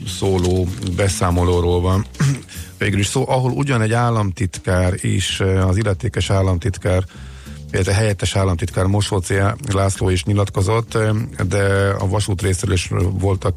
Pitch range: 95-110 Hz